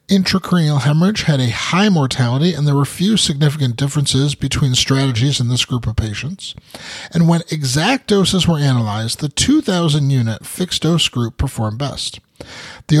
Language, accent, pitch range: English, American, 125-170 Hz